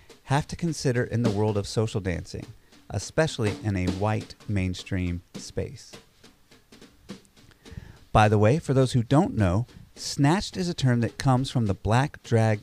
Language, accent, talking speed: English, American, 155 wpm